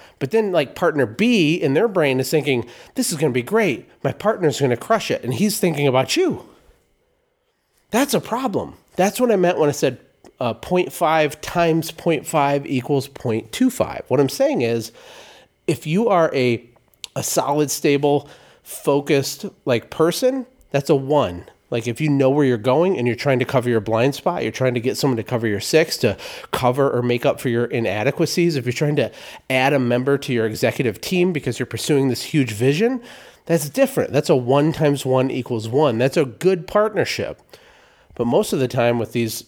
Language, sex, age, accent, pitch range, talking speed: English, male, 30-49, American, 120-170 Hz, 195 wpm